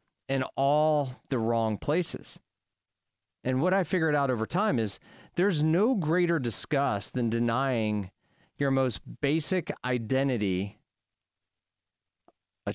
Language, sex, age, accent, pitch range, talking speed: English, male, 30-49, American, 100-145 Hz, 115 wpm